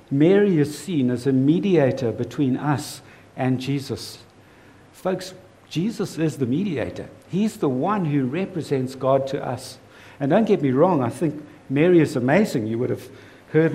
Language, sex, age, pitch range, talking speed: English, male, 60-79, 125-165 Hz, 160 wpm